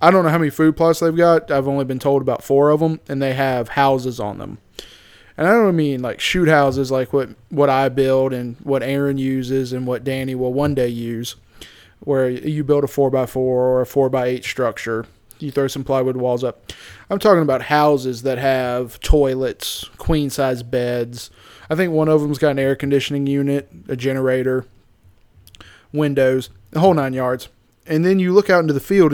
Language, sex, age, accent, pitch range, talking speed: English, male, 20-39, American, 125-150 Hz, 195 wpm